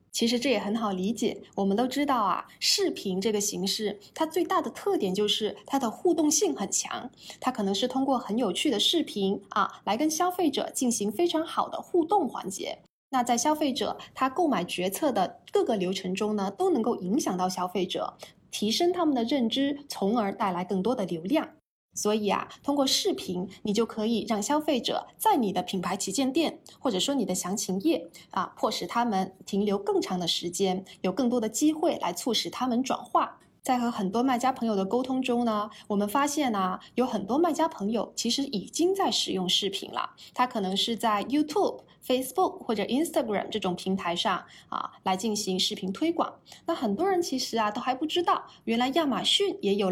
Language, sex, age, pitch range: Chinese, female, 20-39, 195-295 Hz